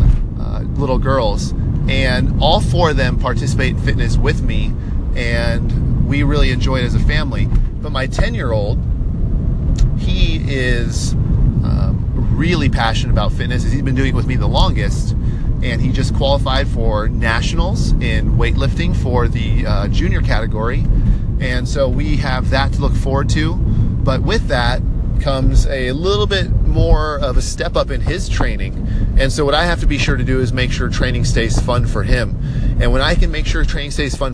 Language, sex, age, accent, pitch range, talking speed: English, male, 30-49, American, 105-130 Hz, 180 wpm